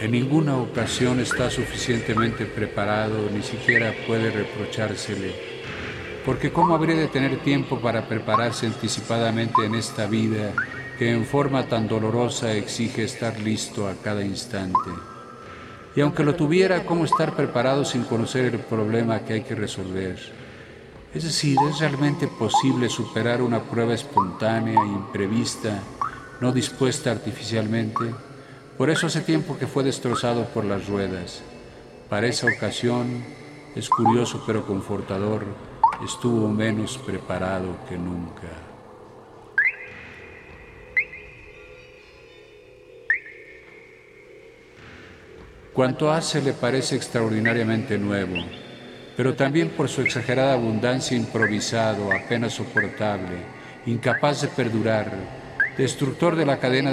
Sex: male